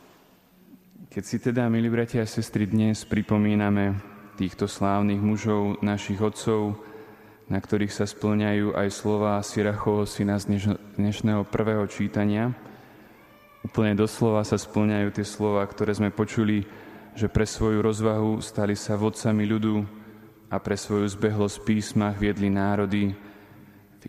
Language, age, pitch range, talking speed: Slovak, 20-39, 100-110 Hz, 130 wpm